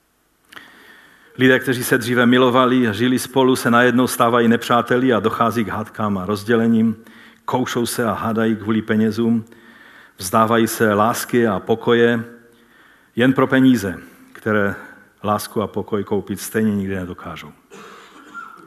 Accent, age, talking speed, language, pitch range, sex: native, 50-69, 130 wpm, Czech, 115-170 Hz, male